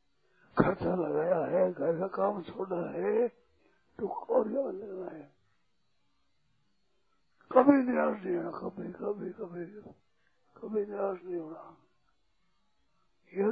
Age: 60-79